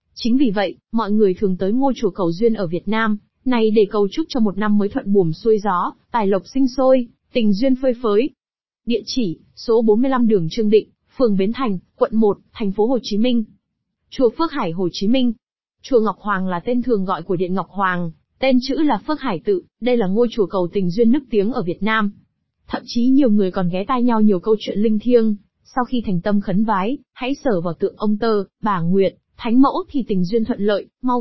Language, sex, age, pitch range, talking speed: Vietnamese, female, 20-39, 195-245 Hz, 235 wpm